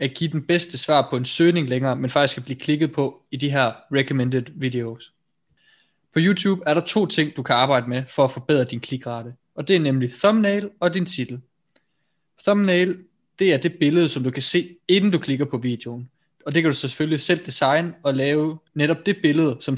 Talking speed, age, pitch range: 210 wpm, 20-39, 135-170 Hz